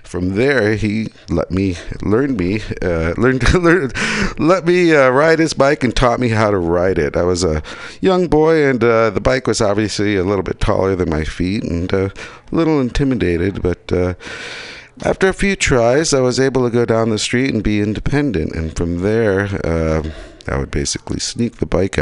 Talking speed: 200 wpm